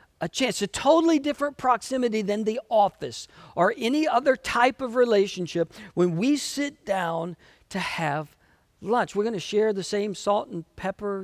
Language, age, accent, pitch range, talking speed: English, 50-69, American, 185-245 Hz, 165 wpm